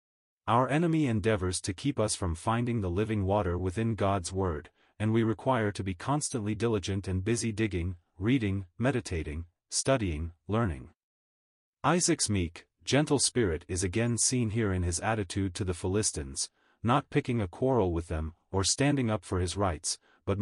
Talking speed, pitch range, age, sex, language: 160 wpm, 90-120 Hz, 30-49, male, English